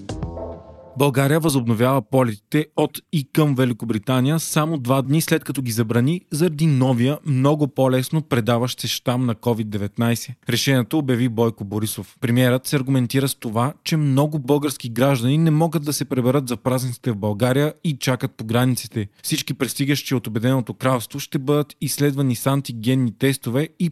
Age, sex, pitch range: 20-39, male, 120-150 Hz